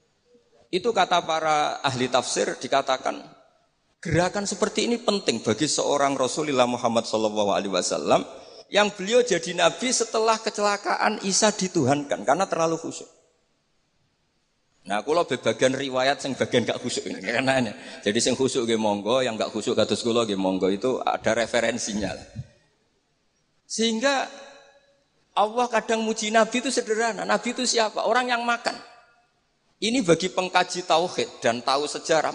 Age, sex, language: 50-69, male, Indonesian